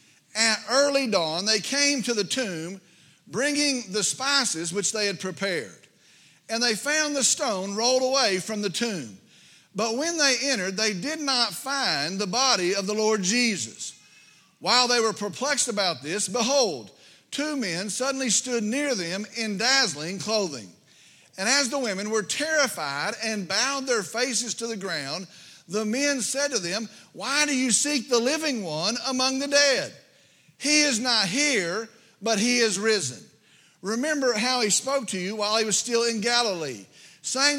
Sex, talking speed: male, 165 wpm